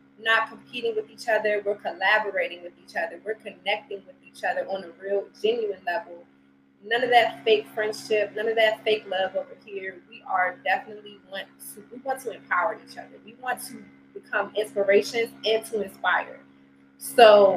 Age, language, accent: 20-39, English, American